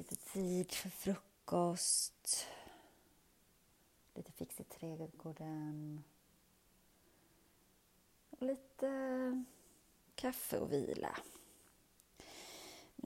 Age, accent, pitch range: 30-49, native, 175-245 Hz